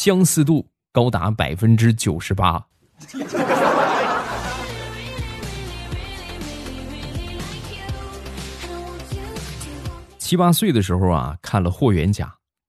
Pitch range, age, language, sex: 90-125 Hz, 20-39, Chinese, male